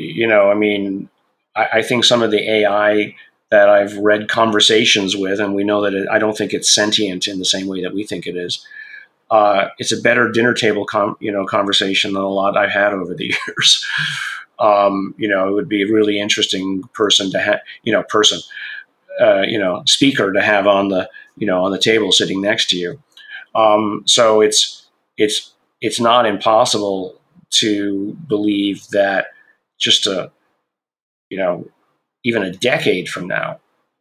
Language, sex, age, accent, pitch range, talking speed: English, male, 30-49, American, 95-110 Hz, 180 wpm